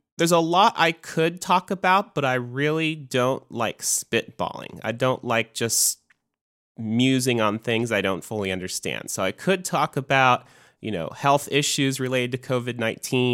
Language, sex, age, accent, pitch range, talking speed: English, male, 30-49, American, 105-130 Hz, 160 wpm